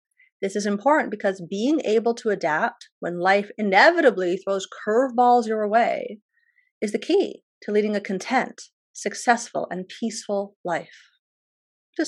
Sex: female